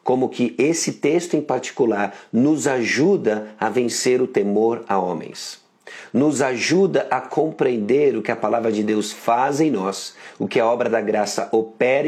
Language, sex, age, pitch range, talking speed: Portuguese, male, 50-69, 110-155 Hz, 170 wpm